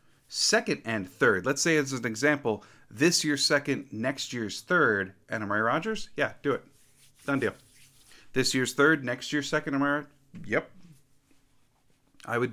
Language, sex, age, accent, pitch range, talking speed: English, male, 30-49, American, 120-160 Hz, 155 wpm